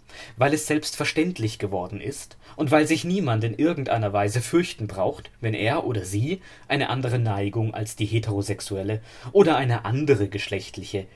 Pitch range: 110-150 Hz